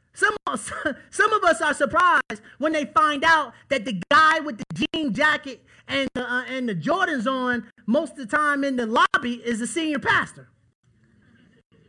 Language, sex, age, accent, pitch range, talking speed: English, male, 30-49, American, 275-395 Hz, 185 wpm